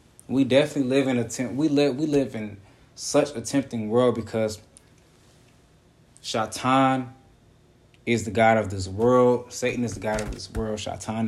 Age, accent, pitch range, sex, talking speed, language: 20-39, American, 110-130 Hz, male, 165 wpm, English